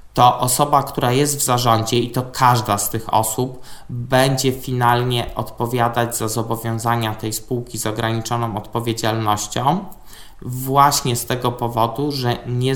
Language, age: Polish, 20-39